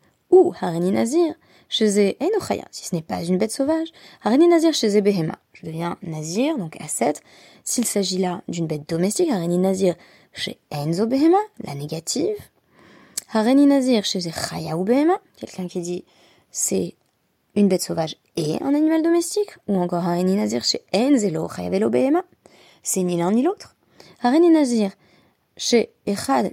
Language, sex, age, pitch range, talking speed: French, female, 20-39, 175-265 Hz, 155 wpm